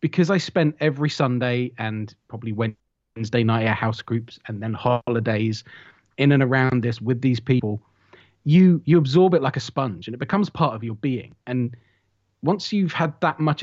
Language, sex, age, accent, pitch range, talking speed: English, male, 30-49, British, 120-160 Hz, 185 wpm